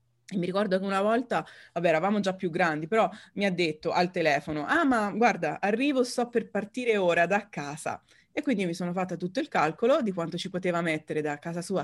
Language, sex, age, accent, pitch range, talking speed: Italian, female, 30-49, native, 165-225 Hz, 220 wpm